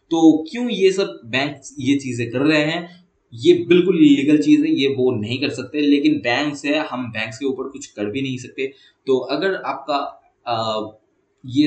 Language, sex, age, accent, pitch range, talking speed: English, male, 20-39, Indian, 120-165 Hz, 180 wpm